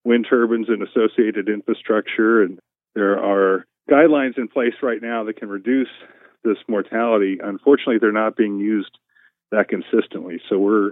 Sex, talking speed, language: male, 150 wpm, English